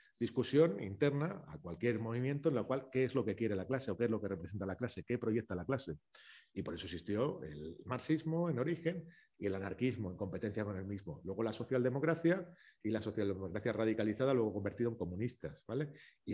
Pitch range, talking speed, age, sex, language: 100-130 Hz, 200 wpm, 40-59, male, Spanish